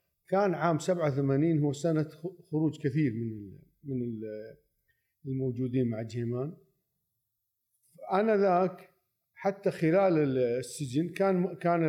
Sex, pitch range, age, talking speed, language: male, 125-170 Hz, 50-69, 85 wpm, Arabic